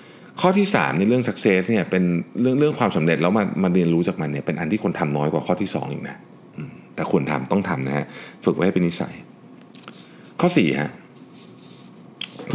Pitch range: 75-110 Hz